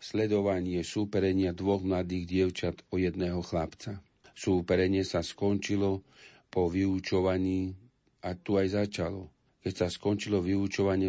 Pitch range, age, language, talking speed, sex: 90-100 Hz, 50-69, Slovak, 115 wpm, male